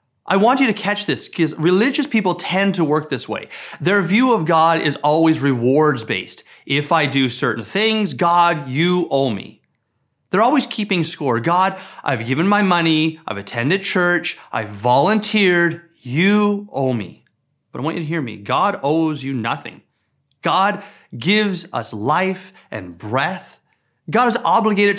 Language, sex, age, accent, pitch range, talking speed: English, male, 30-49, American, 135-190 Hz, 160 wpm